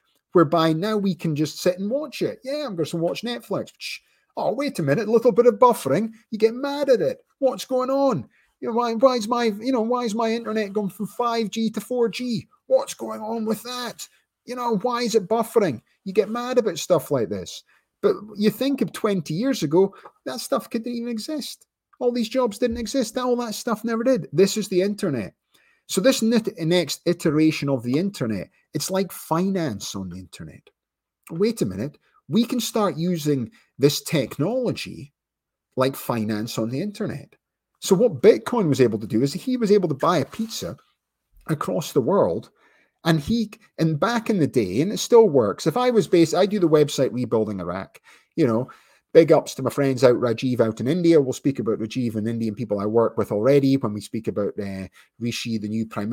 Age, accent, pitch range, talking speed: 30-49, British, 140-235 Hz, 205 wpm